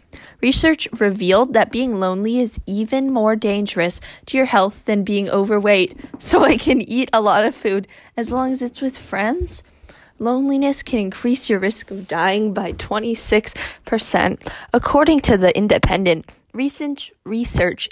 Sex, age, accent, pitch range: female, 10-29, American, 200-260 Hz